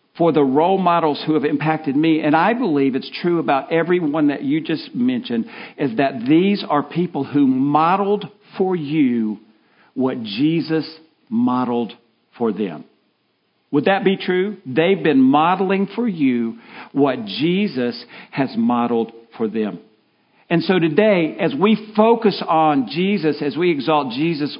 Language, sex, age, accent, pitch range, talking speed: English, male, 50-69, American, 135-195 Hz, 145 wpm